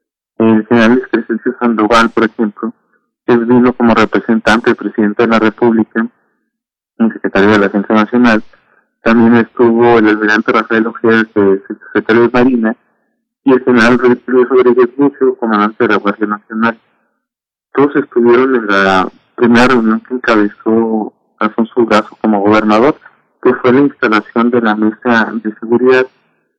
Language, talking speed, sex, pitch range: Italian, 140 wpm, male, 110-125 Hz